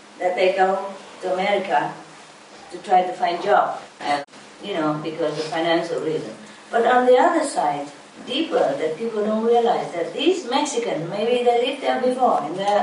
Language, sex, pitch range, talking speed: English, female, 215-270 Hz, 180 wpm